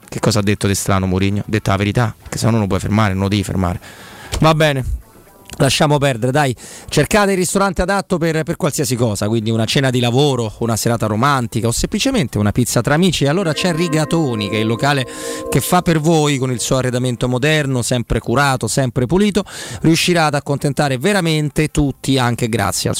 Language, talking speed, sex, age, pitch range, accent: Italian, 200 wpm, male, 30-49, 110-150 Hz, native